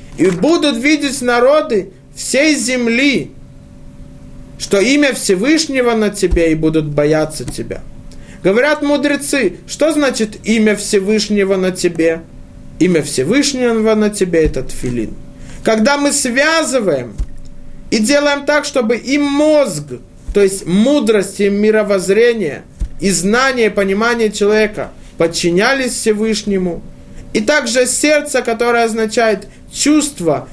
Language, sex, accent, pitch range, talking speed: Russian, male, native, 155-255 Hz, 110 wpm